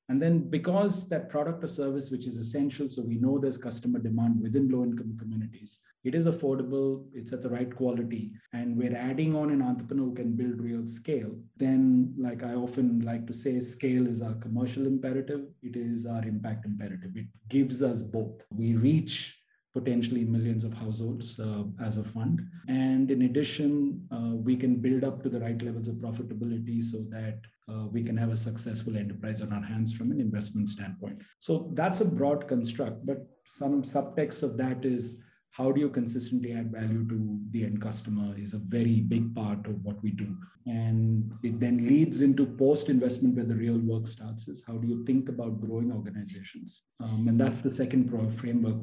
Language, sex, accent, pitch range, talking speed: English, male, Indian, 110-130 Hz, 190 wpm